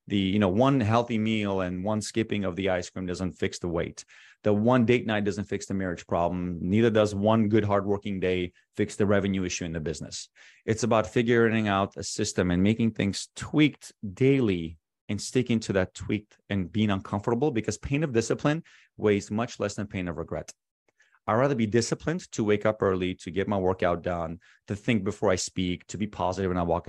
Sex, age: male, 30-49